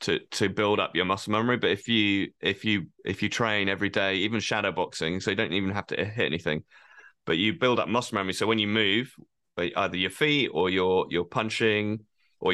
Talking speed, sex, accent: 220 wpm, male, British